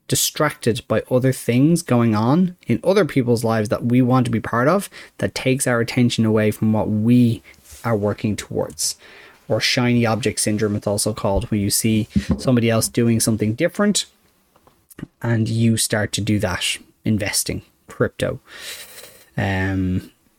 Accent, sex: Irish, male